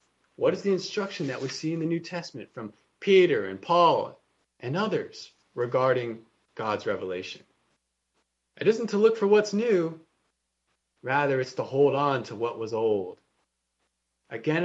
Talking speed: 150 wpm